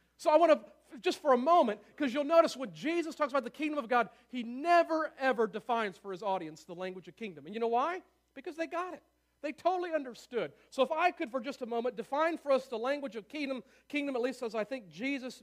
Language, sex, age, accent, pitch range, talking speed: English, male, 50-69, American, 215-280 Hz, 245 wpm